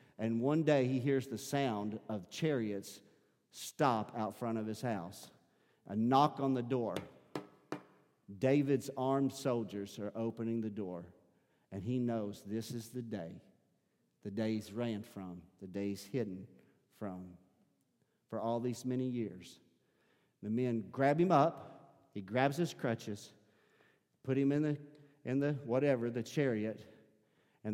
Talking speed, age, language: 145 wpm, 50-69, English